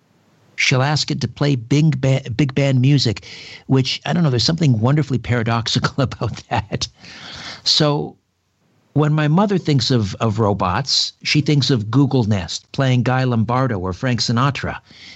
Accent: American